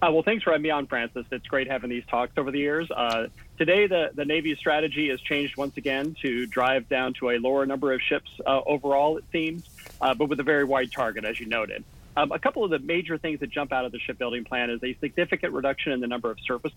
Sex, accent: male, American